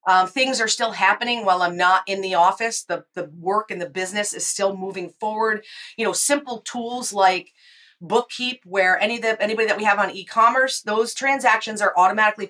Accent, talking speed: American, 195 wpm